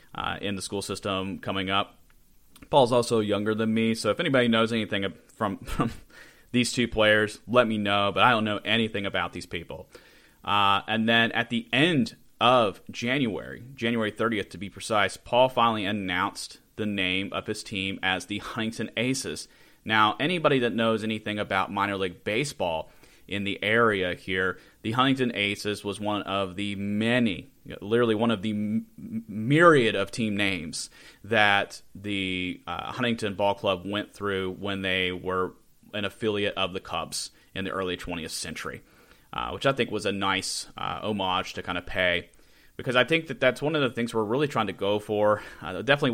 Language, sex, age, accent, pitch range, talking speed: English, male, 30-49, American, 100-115 Hz, 180 wpm